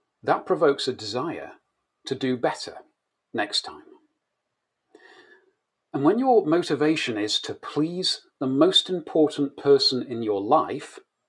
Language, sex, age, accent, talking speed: English, male, 40-59, British, 120 wpm